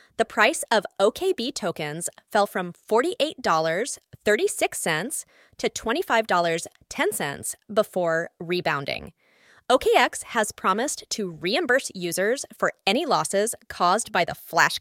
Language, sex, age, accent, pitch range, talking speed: English, female, 30-49, American, 190-255 Hz, 100 wpm